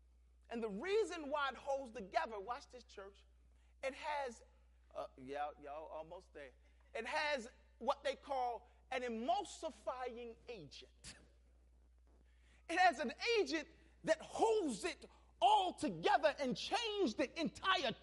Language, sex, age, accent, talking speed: English, male, 40-59, American, 125 wpm